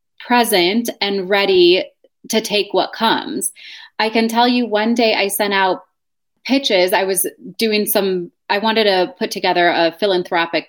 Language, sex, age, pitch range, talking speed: English, female, 20-39, 195-270 Hz, 155 wpm